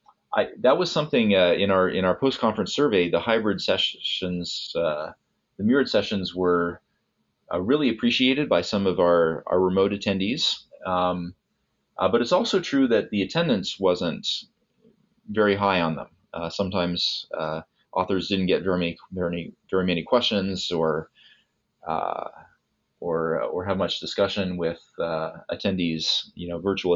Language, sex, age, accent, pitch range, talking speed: English, male, 30-49, American, 85-100 Hz, 150 wpm